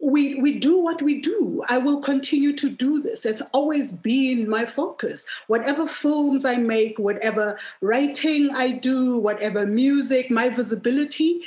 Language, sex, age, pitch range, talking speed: English, female, 30-49, 205-270 Hz, 150 wpm